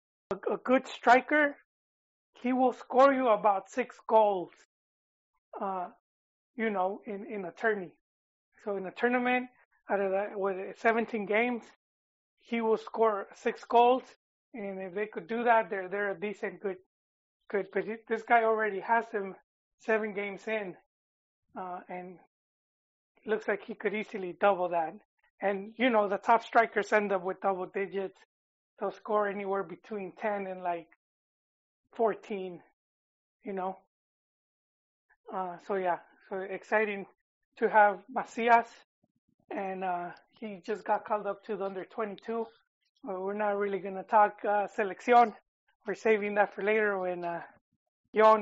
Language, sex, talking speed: English, male, 145 wpm